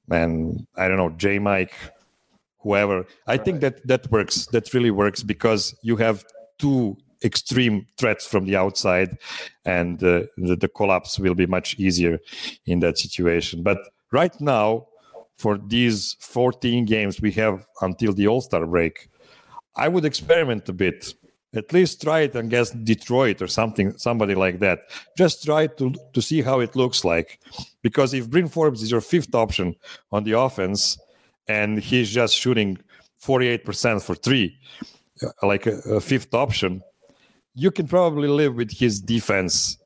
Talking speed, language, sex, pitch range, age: 160 wpm, English, male, 100-135 Hz, 50-69